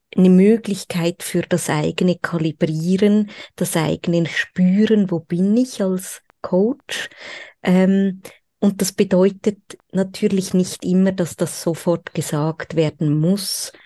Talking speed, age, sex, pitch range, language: 115 wpm, 20-39, female, 170-220 Hz, German